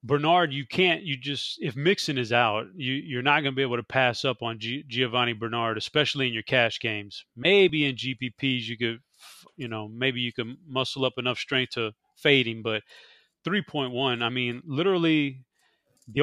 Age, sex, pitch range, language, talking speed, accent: 30-49, male, 120-145 Hz, English, 190 wpm, American